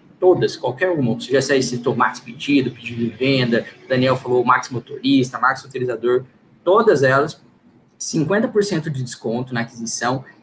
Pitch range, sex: 125-170 Hz, male